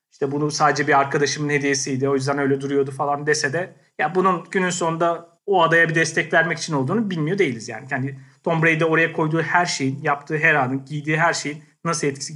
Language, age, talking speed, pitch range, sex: Turkish, 40-59, 205 wpm, 140-170 Hz, male